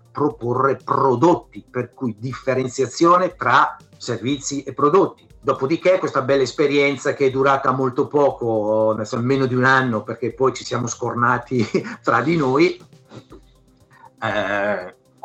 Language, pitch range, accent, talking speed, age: Italian, 125-150 Hz, native, 125 wpm, 50-69